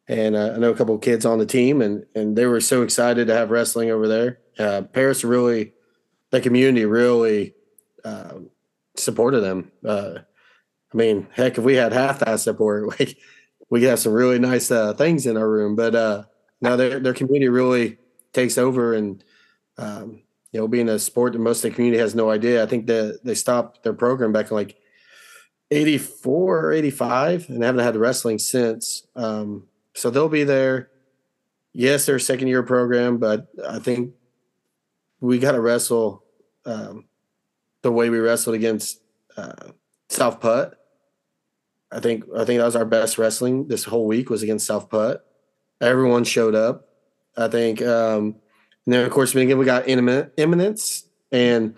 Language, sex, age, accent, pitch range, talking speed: English, male, 30-49, American, 110-125 Hz, 180 wpm